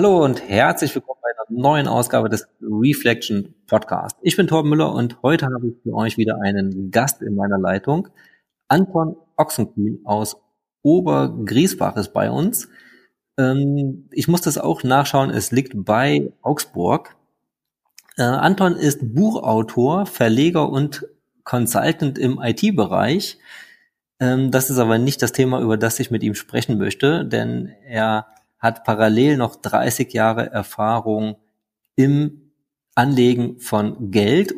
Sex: male